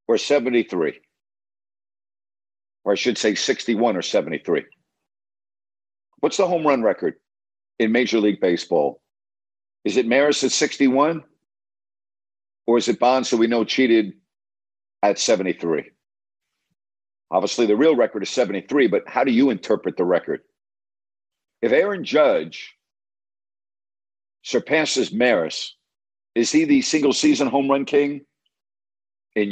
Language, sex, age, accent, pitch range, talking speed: English, male, 50-69, American, 100-125 Hz, 120 wpm